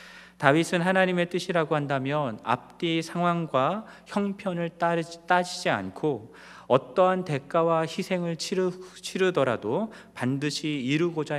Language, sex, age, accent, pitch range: Korean, male, 40-59, native, 125-175 Hz